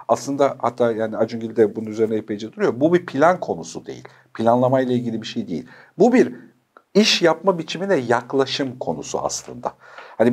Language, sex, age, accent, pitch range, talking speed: Turkish, male, 50-69, native, 115-145 Hz, 165 wpm